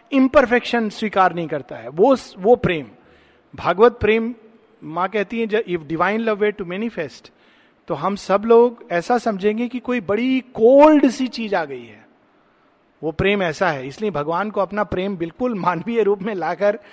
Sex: male